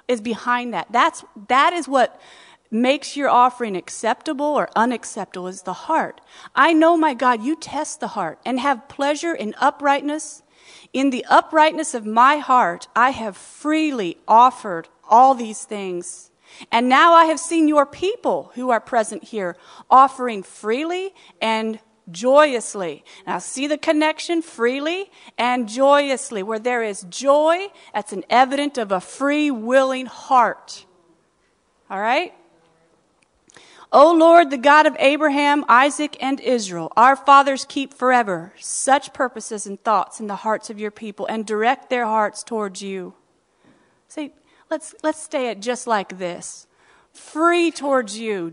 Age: 40-59